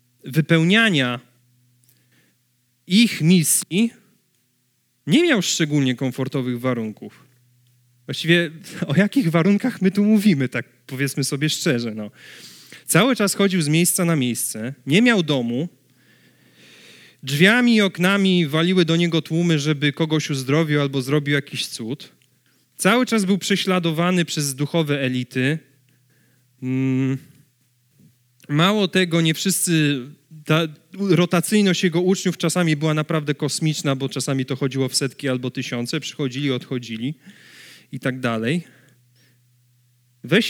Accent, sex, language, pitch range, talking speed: native, male, Polish, 130-175 Hz, 115 wpm